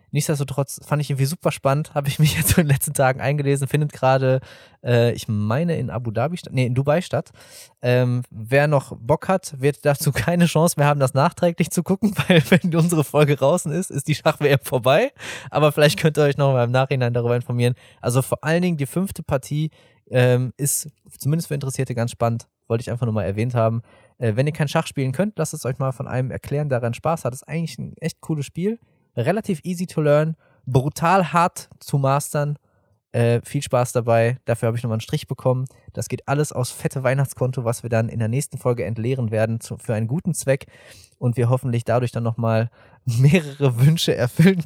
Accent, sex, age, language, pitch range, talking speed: German, male, 20-39, German, 120-150 Hz, 210 wpm